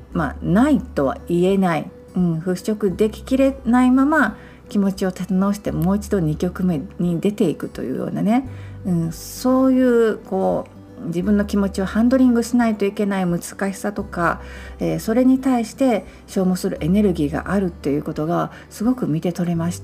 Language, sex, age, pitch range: Japanese, female, 50-69, 165-225 Hz